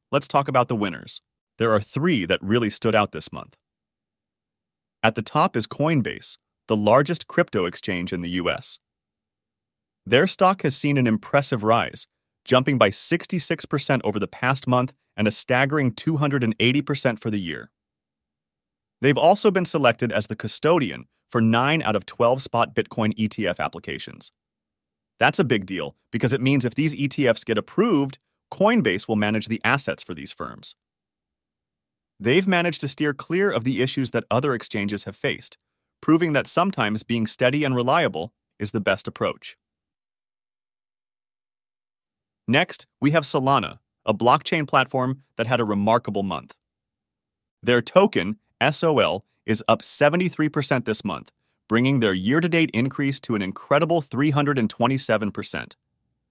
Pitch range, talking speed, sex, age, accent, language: 110-145 Hz, 145 wpm, male, 30-49, American, English